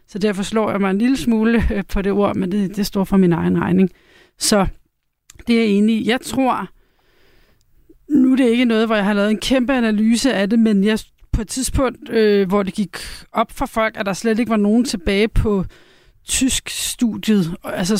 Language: Danish